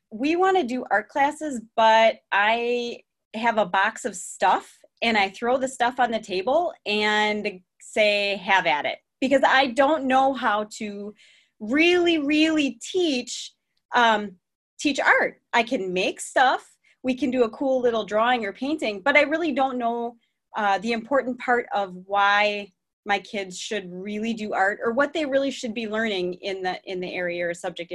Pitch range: 200-265 Hz